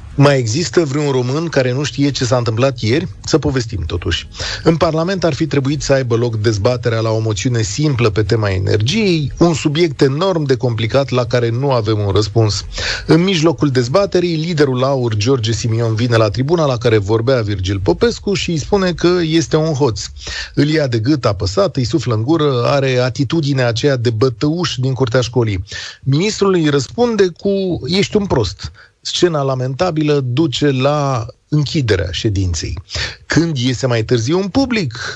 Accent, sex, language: native, male, Romanian